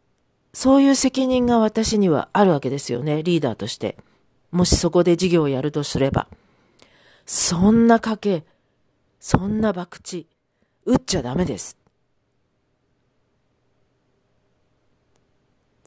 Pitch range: 165-240 Hz